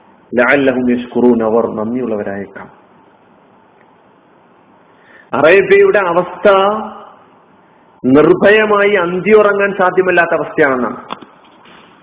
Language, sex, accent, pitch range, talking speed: Malayalam, male, native, 155-200 Hz, 55 wpm